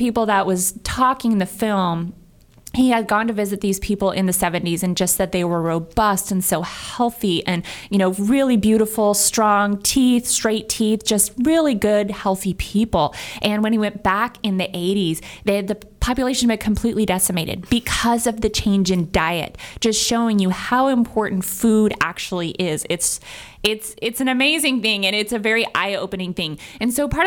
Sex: female